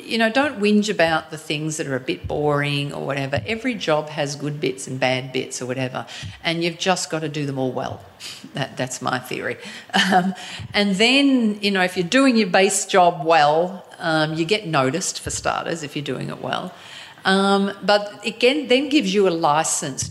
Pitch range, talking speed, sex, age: 130-170 Hz, 205 wpm, female, 50-69